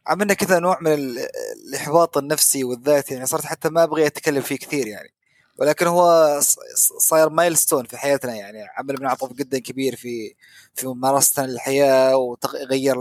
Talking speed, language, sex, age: 150 wpm, Arabic, male, 20-39